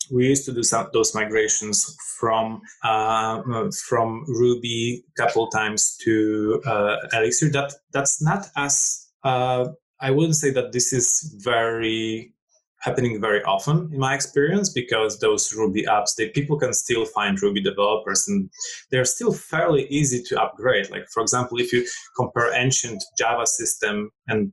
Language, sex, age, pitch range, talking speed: English, male, 20-39, 110-155 Hz, 155 wpm